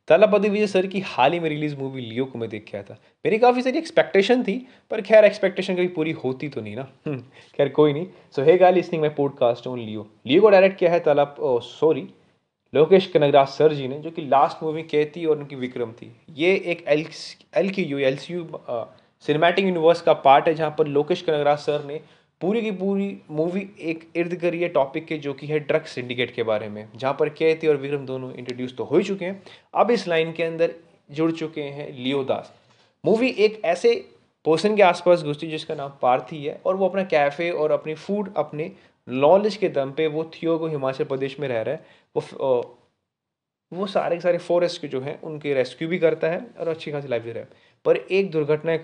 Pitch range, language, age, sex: 140-180 Hz, Hindi, 20-39, male